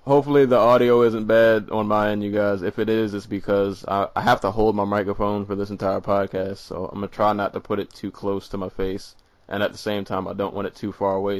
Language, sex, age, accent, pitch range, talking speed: English, male, 20-39, American, 100-125 Hz, 275 wpm